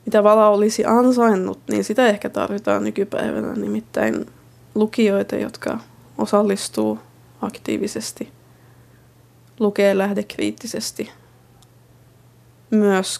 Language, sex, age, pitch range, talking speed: Finnish, female, 20-39, 190-220 Hz, 75 wpm